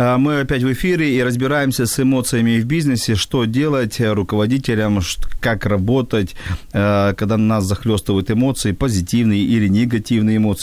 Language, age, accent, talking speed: Ukrainian, 40-59, native, 130 wpm